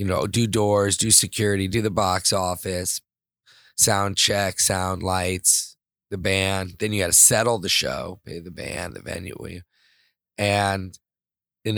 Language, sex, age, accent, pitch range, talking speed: English, male, 30-49, American, 95-115 Hz, 155 wpm